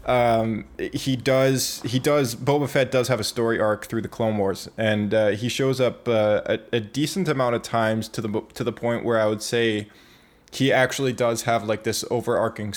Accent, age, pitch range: American, 20-39, 105-120 Hz